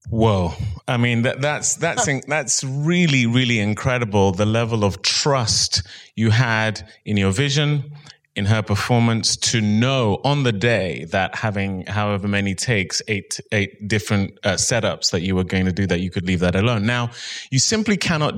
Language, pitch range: English, 95-120 Hz